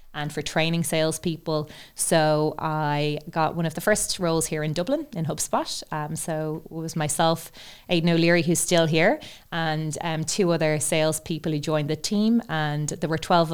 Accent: Irish